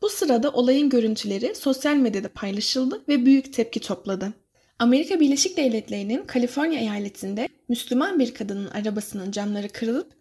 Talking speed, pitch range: 130 wpm, 220-275 Hz